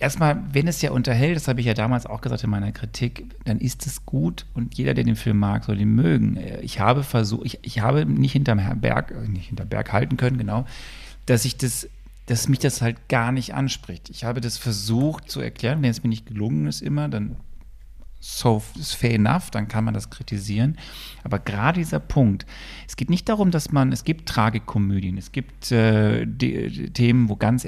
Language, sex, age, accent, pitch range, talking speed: German, male, 40-59, German, 105-130 Hz, 210 wpm